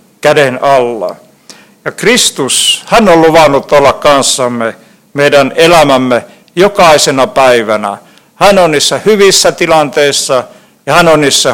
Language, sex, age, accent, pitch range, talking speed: Finnish, male, 50-69, native, 150-195 Hz, 115 wpm